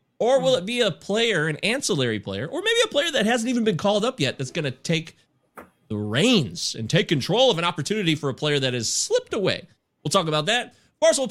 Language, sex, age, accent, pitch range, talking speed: English, male, 30-49, American, 135-220 Hz, 245 wpm